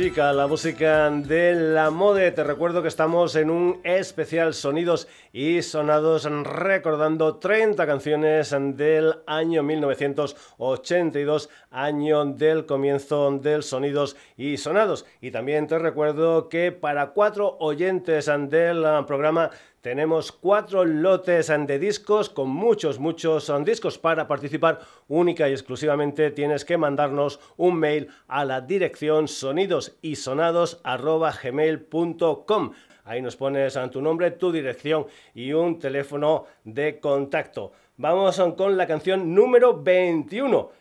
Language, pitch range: Spanish, 145-175 Hz